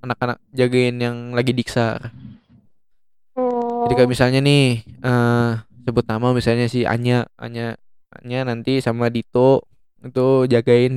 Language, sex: Indonesian, male